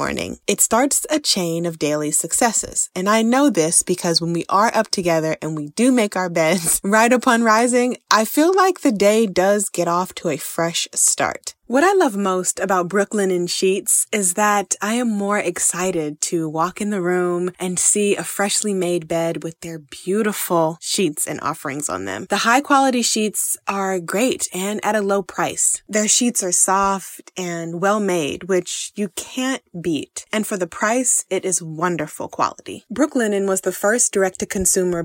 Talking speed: 180 wpm